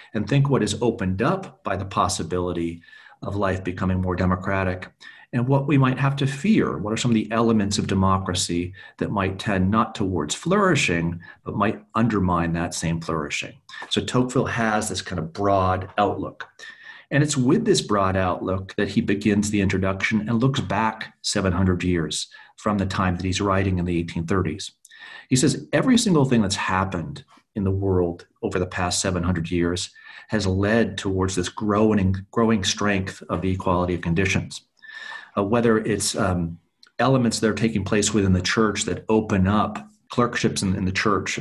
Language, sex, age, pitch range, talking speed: English, male, 40-59, 90-110 Hz, 175 wpm